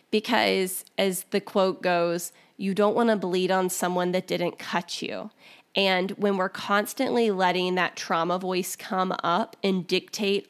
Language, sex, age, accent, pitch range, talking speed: English, female, 20-39, American, 180-210 Hz, 160 wpm